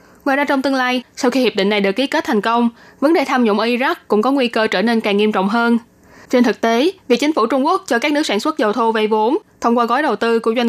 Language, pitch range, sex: Vietnamese, 215-265 Hz, female